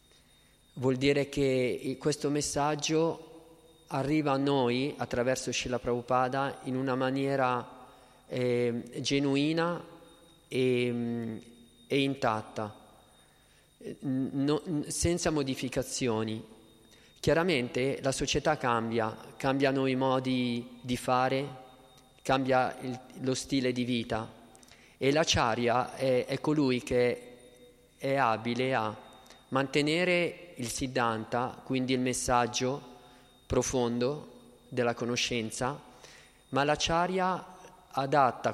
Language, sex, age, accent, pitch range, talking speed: Italian, male, 40-59, native, 125-145 Hz, 90 wpm